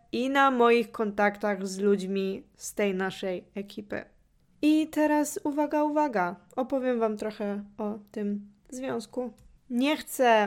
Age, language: 20-39, Polish